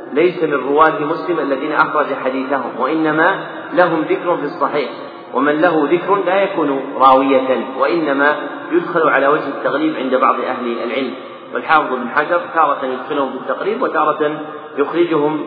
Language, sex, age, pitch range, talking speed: Arabic, male, 40-59, 135-155 Hz, 135 wpm